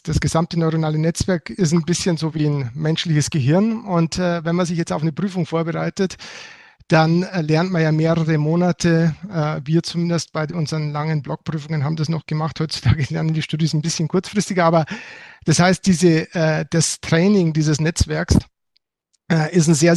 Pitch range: 155-185 Hz